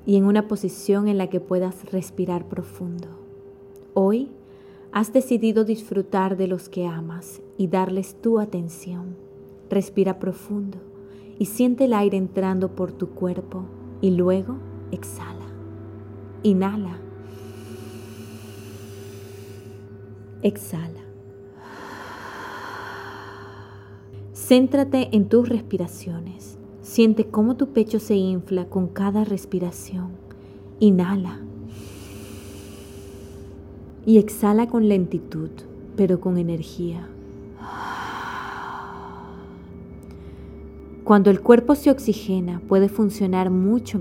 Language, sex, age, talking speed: Spanish, female, 30-49, 90 wpm